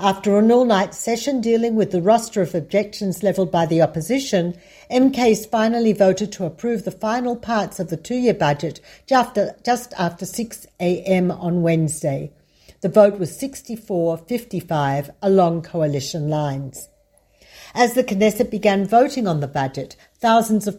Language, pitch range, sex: Hebrew, 175-230 Hz, female